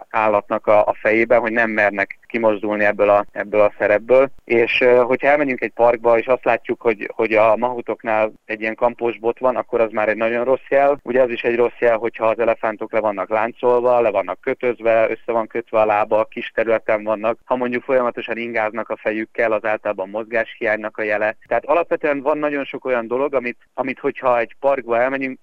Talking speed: 195 wpm